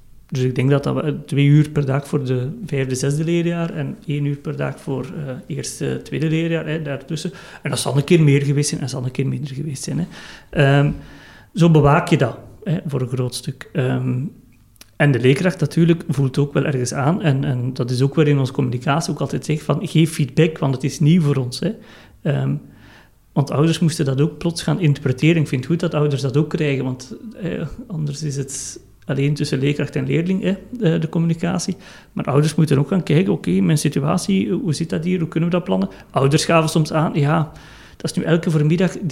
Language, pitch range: Dutch, 135-165 Hz